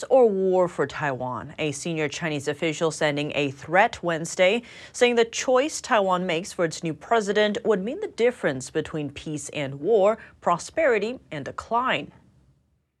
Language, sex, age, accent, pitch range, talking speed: English, female, 30-49, American, 150-210 Hz, 150 wpm